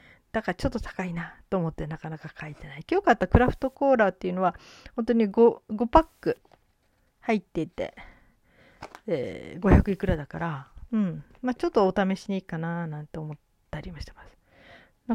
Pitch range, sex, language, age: 165-225 Hz, female, Japanese, 40-59